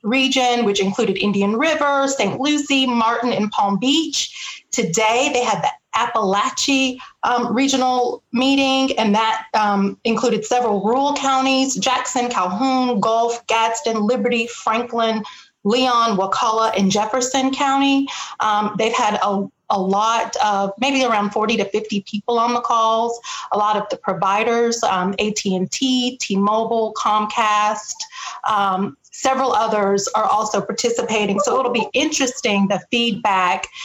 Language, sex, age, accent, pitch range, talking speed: English, female, 30-49, American, 210-260 Hz, 130 wpm